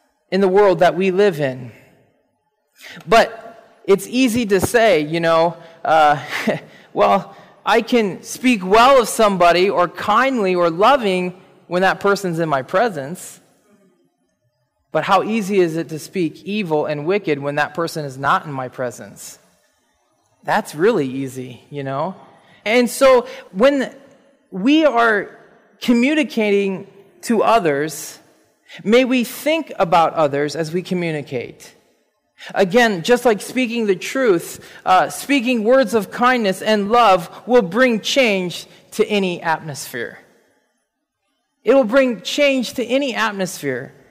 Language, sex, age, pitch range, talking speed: English, male, 20-39, 170-240 Hz, 130 wpm